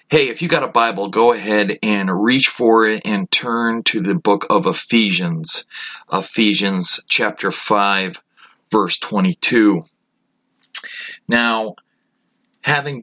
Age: 40-59